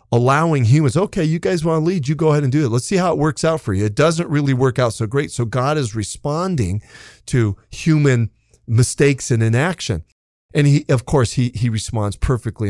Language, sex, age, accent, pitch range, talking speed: English, male, 40-59, American, 105-135 Hz, 215 wpm